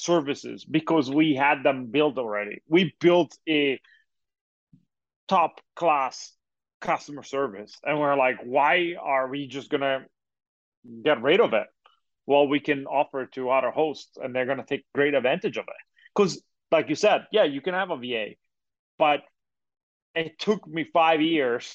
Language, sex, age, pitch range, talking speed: English, male, 30-49, 135-170 Hz, 155 wpm